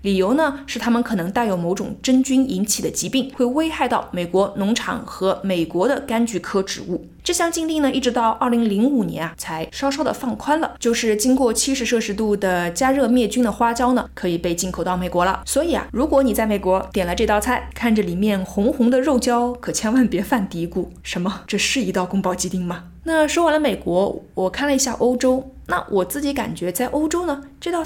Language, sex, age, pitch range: Chinese, female, 20-39, 190-260 Hz